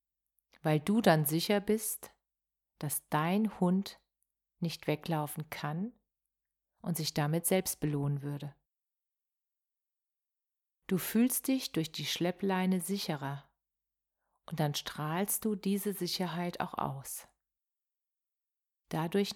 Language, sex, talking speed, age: German, female, 100 wpm, 40-59